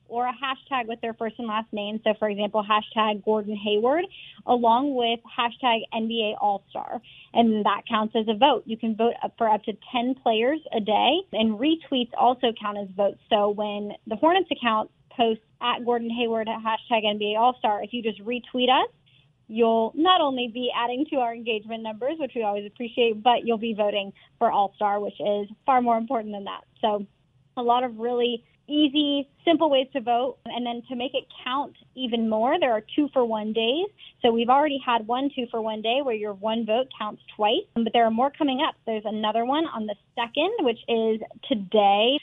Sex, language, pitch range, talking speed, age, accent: female, English, 215-255 Hz, 195 wpm, 20-39, American